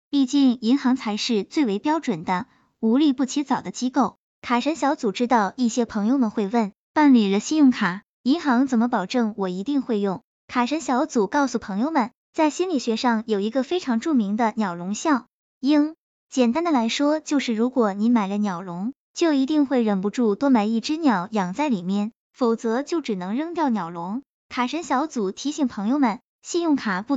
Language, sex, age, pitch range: Chinese, male, 10-29, 220-285 Hz